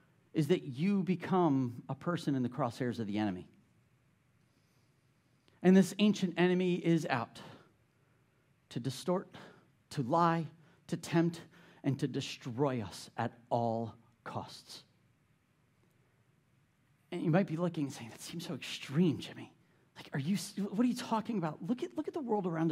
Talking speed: 155 wpm